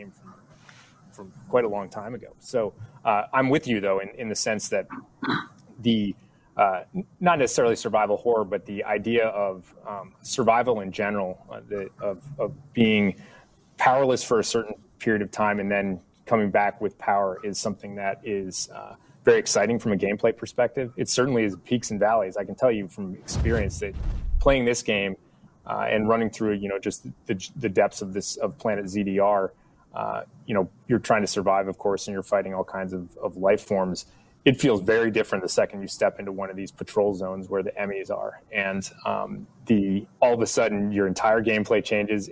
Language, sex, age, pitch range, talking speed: English, male, 30-49, 95-115 Hz, 195 wpm